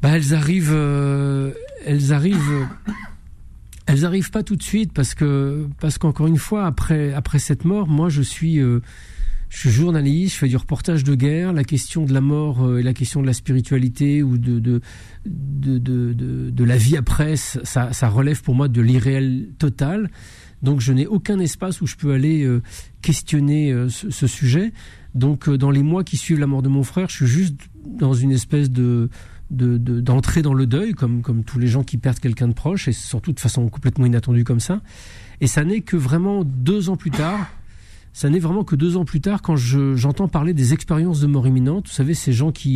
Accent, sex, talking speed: French, male, 220 wpm